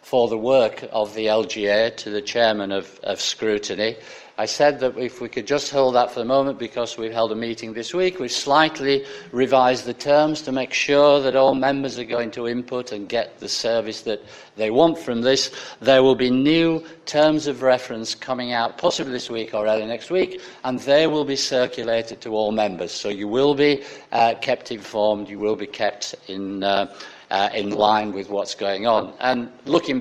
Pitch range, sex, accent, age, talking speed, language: 110-135 Hz, male, British, 50-69, 205 wpm, English